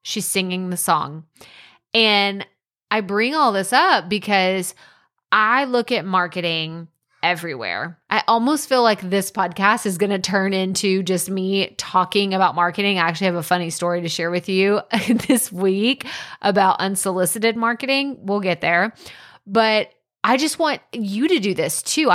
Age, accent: 20-39, American